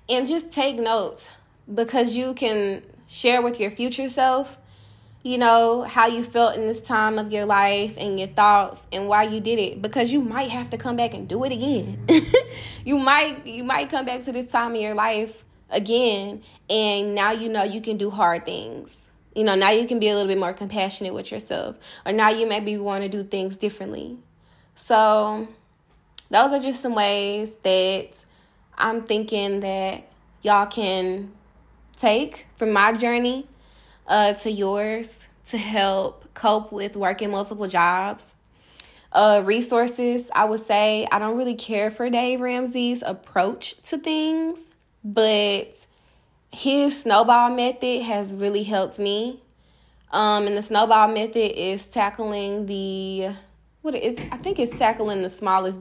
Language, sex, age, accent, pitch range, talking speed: English, female, 10-29, American, 200-240 Hz, 160 wpm